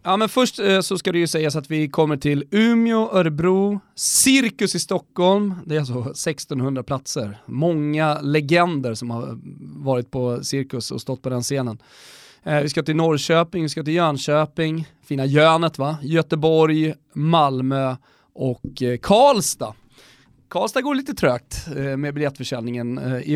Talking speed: 150 wpm